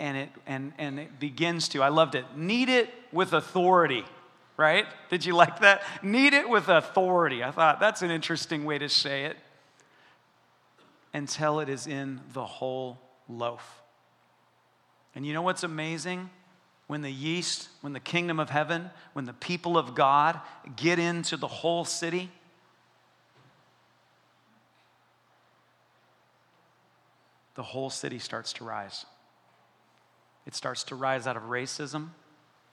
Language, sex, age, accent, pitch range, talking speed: English, male, 40-59, American, 130-165 Hz, 140 wpm